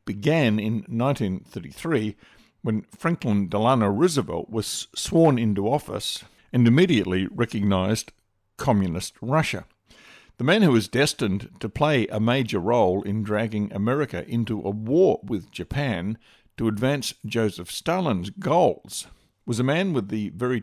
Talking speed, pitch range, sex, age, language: 130 wpm, 100-125 Hz, male, 60-79, English